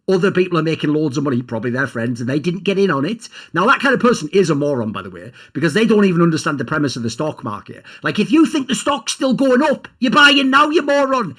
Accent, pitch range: British, 145-215 Hz